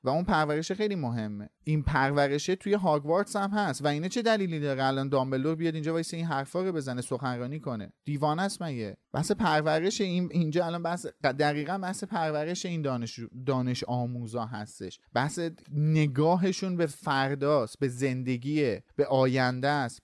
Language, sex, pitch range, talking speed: Persian, male, 135-180 Hz, 155 wpm